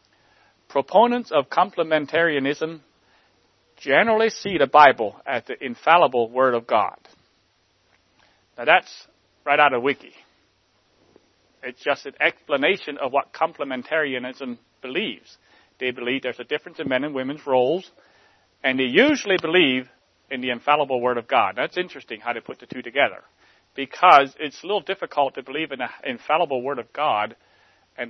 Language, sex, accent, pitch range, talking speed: English, male, American, 120-170 Hz, 145 wpm